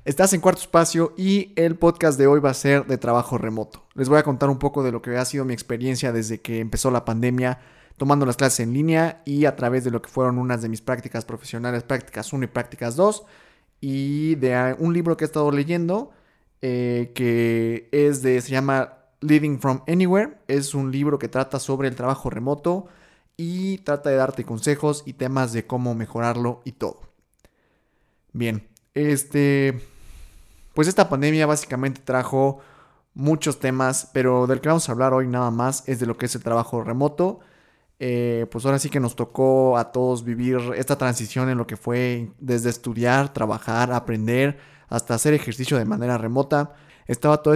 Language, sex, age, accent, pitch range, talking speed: Spanish, male, 20-39, Mexican, 120-145 Hz, 185 wpm